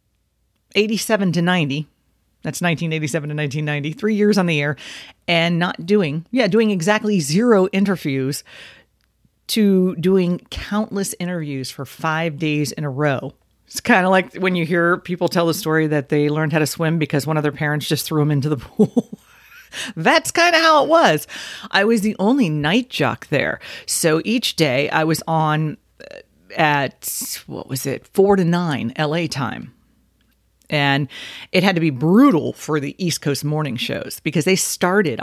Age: 40-59